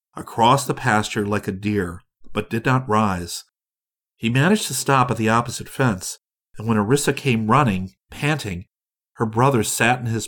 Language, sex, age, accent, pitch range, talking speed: English, male, 50-69, American, 105-135 Hz, 170 wpm